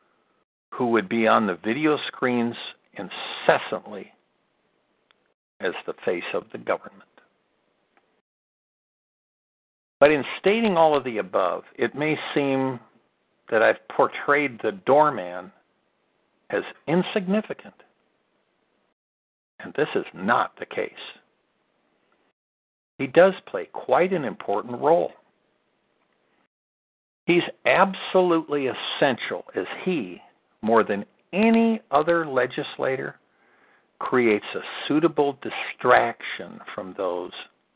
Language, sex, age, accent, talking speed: English, male, 60-79, American, 95 wpm